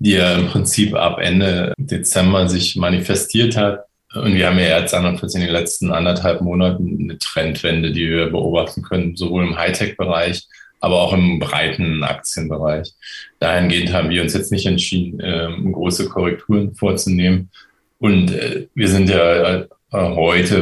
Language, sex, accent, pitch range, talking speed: German, male, German, 85-100 Hz, 145 wpm